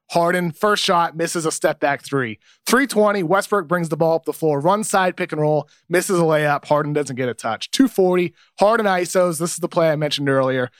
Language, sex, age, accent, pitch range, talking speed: English, male, 30-49, American, 150-185 Hz, 210 wpm